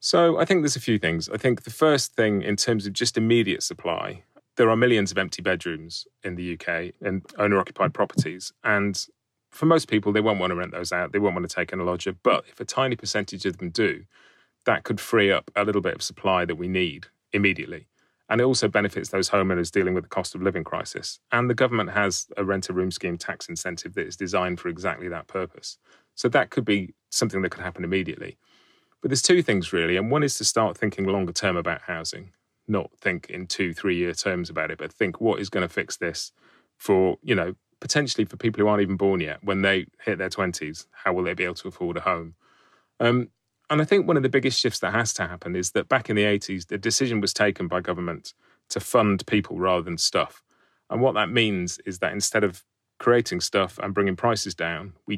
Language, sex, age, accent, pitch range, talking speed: English, male, 30-49, British, 90-115 Hz, 230 wpm